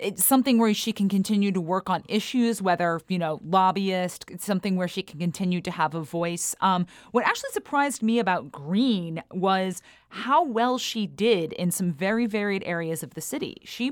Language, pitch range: English, 185-235 Hz